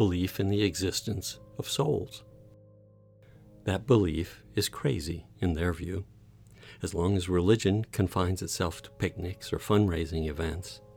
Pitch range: 90-110 Hz